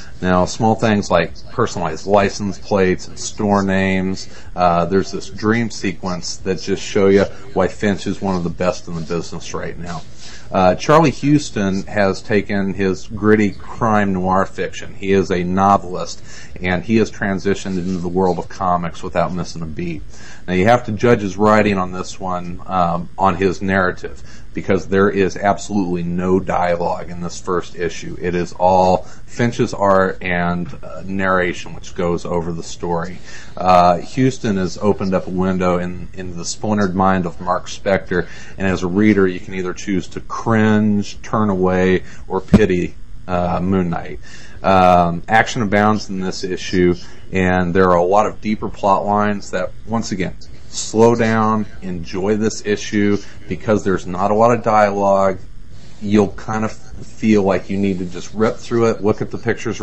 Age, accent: 40-59, American